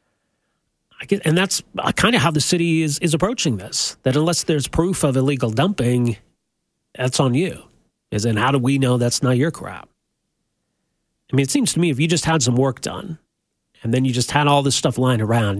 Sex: male